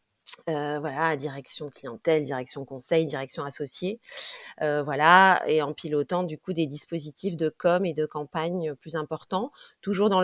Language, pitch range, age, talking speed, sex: French, 150-180 Hz, 30-49, 150 wpm, female